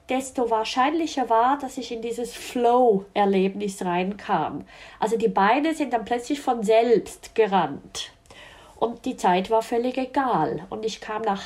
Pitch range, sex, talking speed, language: 225-270 Hz, female, 145 wpm, German